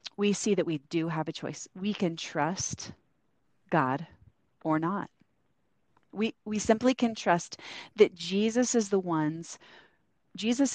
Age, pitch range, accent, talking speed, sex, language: 30-49, 170-205 Hz, American, 140 wpm, female, English